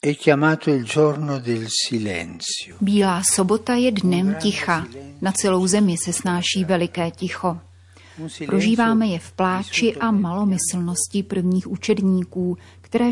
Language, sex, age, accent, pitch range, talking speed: Czech, female, 30-49, native, 170-200 Hz, 95 wpm